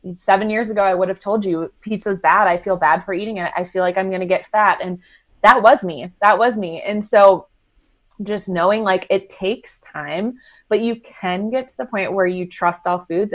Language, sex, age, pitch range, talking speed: English, female, 20-39, 175-210 Hz, 230 wpm